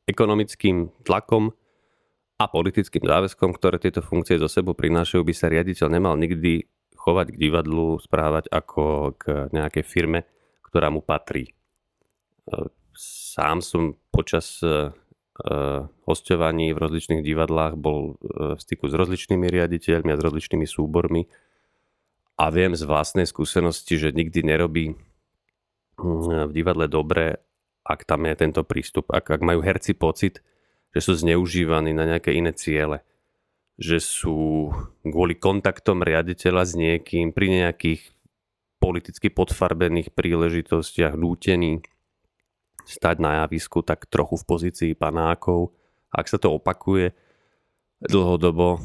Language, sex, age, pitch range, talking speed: Slovak, male, 30-49, 80-90 Hz, 120 wpm